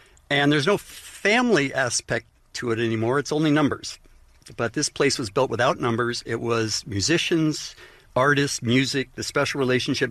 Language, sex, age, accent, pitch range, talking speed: English, male, 60-79, American, 115-150 Hz, 155 wpm